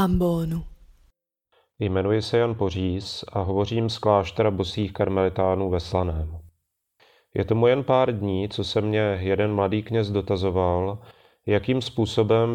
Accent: native